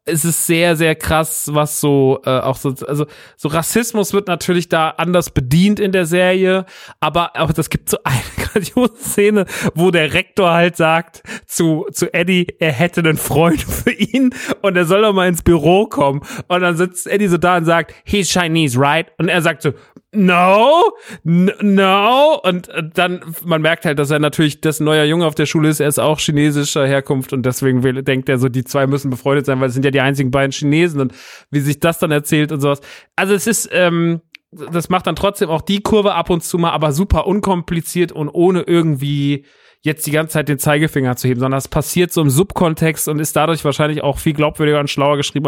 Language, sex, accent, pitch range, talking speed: German, male, German, 150-180 Hz, 210 wpm